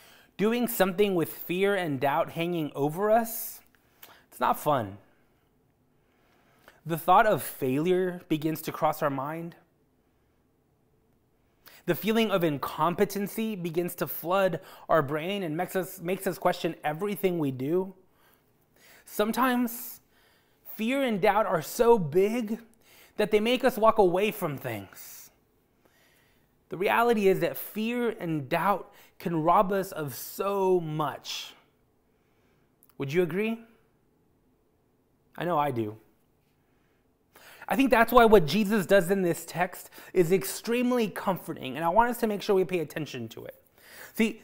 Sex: male